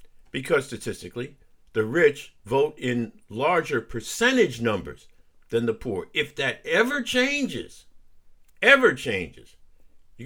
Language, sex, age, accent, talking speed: English, male, 50-69, American, 110 wpm